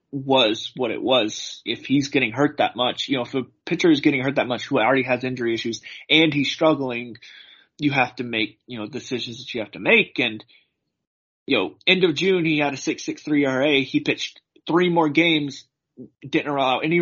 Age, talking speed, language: 20-39, 210 wpm, English